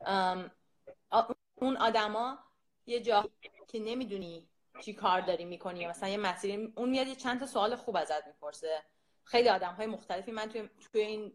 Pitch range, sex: 185-235 Hz, female